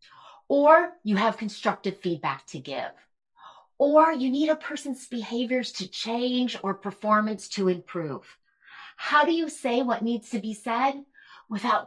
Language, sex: English, female